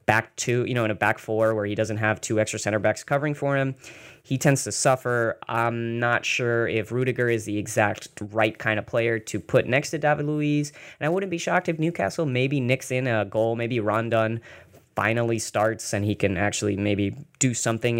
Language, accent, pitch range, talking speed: English, American, 110-130 Hz, 215 wpm